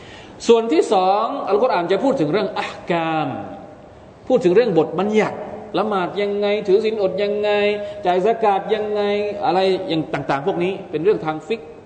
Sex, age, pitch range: male, 20-39, 135-205 Hz